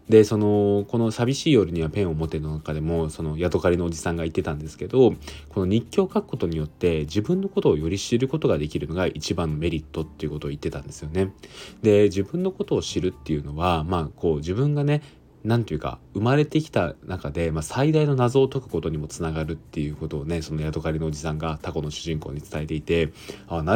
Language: Japanese